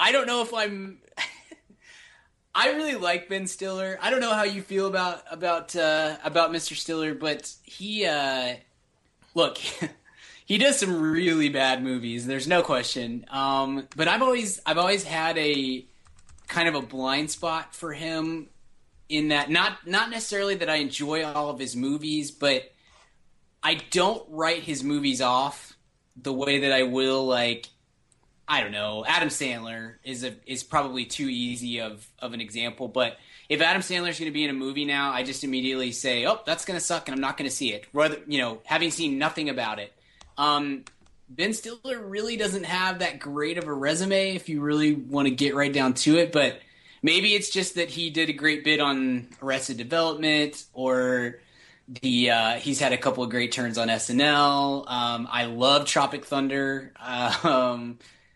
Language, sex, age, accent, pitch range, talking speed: English, male, 20-39, American, 130-165 Hz, 185 wpm